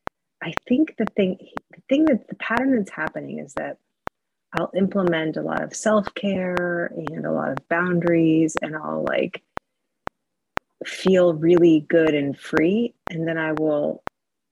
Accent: American